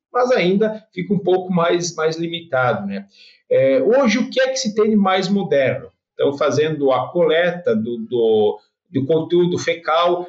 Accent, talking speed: Brazilian, 170 wpm